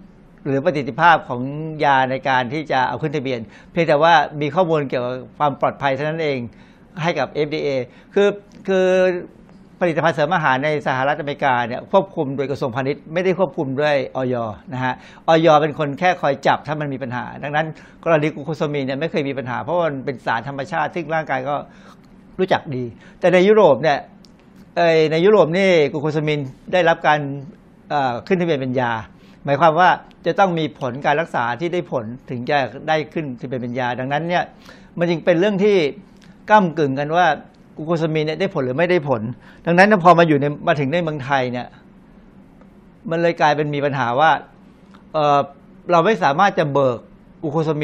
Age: 60-79